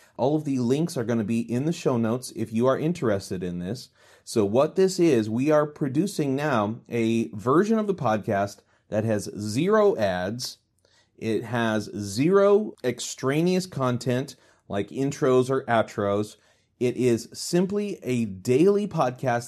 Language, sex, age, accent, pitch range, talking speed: English, male, 30-49, American, 110-140 Hz, 155 wpm